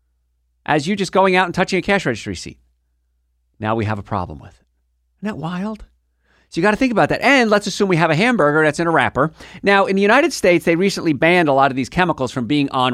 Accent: American